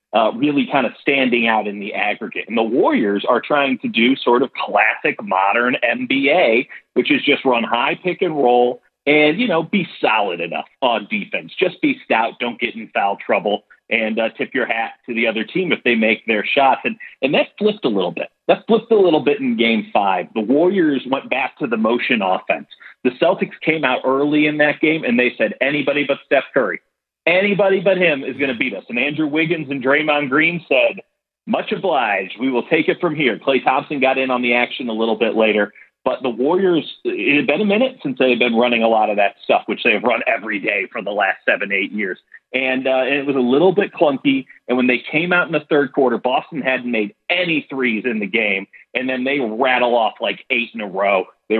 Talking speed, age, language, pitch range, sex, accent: 230 wpm, 40-59, English, 120-170 Hz, male, American